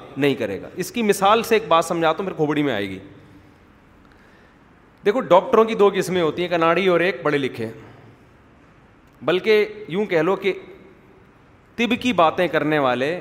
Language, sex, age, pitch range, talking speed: Urdu, male, 30-49, 145-205 Hz, 170 wpm